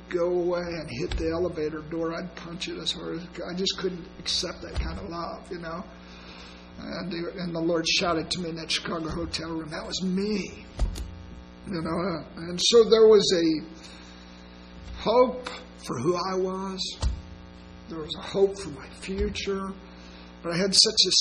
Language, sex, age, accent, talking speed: English, male, 50-69, American, 180 wpm